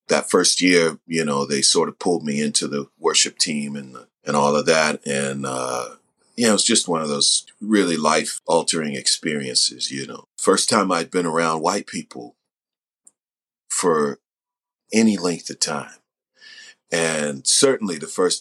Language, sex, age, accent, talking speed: English, male, 40-59, American, 165 wpm